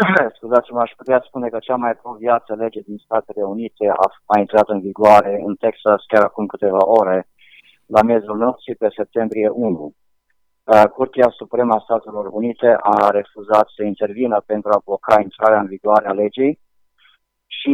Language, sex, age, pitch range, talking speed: Romanian, male, 50-69, 105-125 Hz, 160 wpm